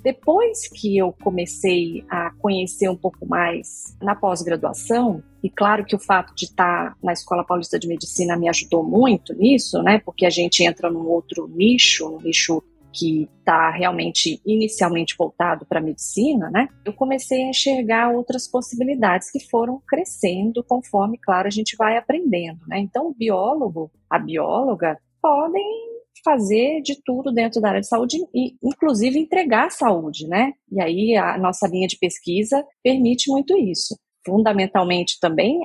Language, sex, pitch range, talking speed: Portuguese, female, 180-250 Hz, 155 wpm